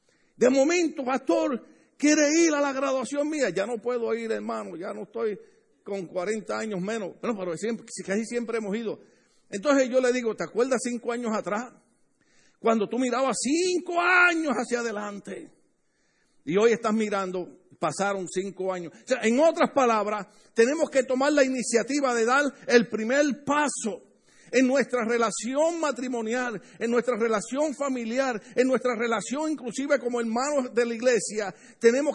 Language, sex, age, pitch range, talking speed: Spanish, male, 50-69, 215-265 Hz, 160 wpm